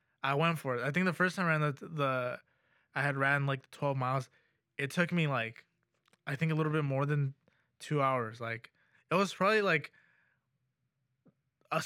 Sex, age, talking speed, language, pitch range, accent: male, 20-39, 190 wpm, English, 140-170 Hz, American